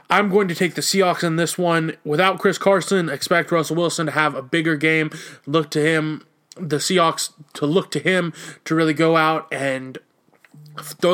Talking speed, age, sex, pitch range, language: 190 wpm, 20-39, male, 150-170 Hz, English